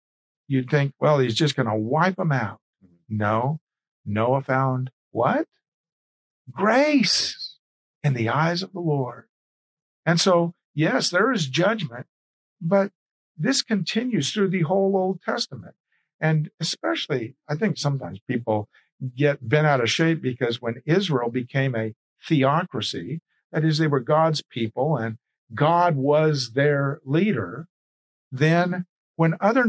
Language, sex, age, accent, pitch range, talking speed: English, male, 50-69, American, 125-170 Hz, 135 wpm